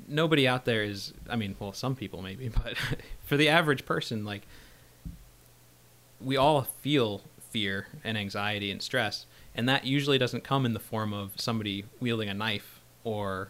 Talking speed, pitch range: 170 wpm, 95-120 Hz